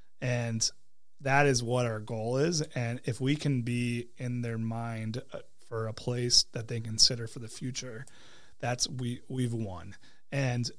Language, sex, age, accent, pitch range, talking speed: English, male, 30-49, American, 115-130 Hz, 160 wpm